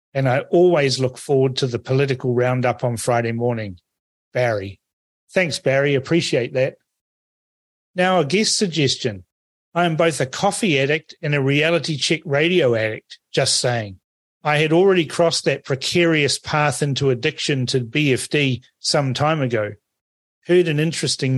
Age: 40-59